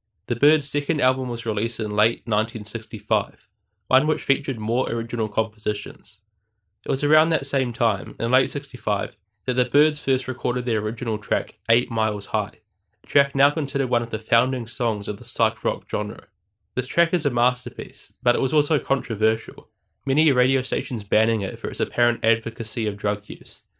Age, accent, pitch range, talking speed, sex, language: 10-29, Australian, 105-130 Hz, 175 wpm, male, English